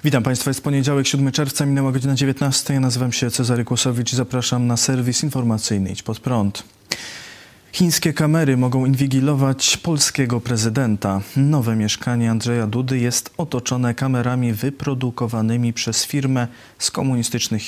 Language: Polish